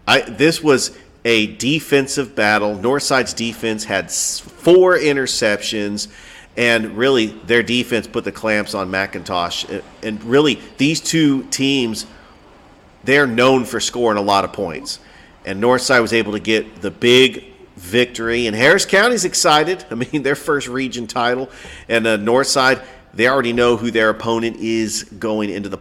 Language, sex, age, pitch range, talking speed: English, male, 40-59, 100-120 Hz, 150 wpm